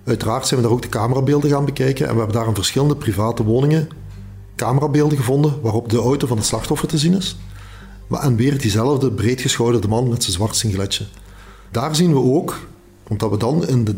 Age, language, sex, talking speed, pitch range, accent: 40-59, Dutch, male, 200 wpm, 105-145 Hz, Dutch